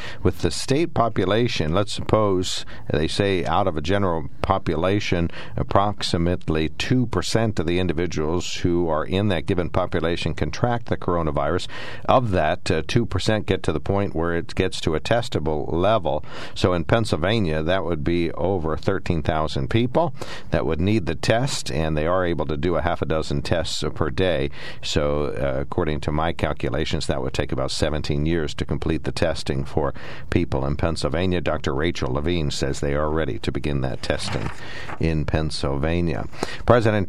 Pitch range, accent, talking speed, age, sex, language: 80-100 Hz, American, 165 wpm, 60-79, male, English